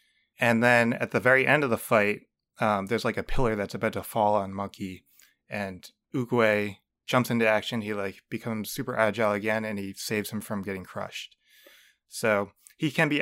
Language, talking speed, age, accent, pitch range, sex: English, 190 wpm, 20-39, American, 105-125 Hz, male